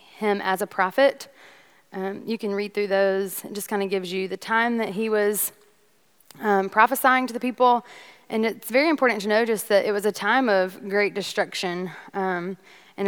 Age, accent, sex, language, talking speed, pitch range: 20-39, American, female, English, 195 wpm, 190-220 Hz